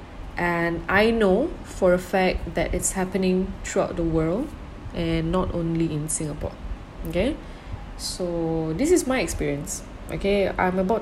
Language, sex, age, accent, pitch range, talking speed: English, female, 20-39, Malaysian, 160-190 Hz, 140 wpm